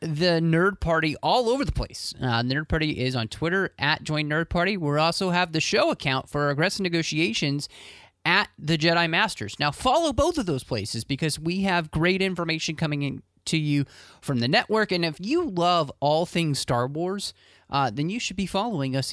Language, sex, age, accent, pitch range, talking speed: English, male, 30-49, American, 125-180 Hz, 200 wpm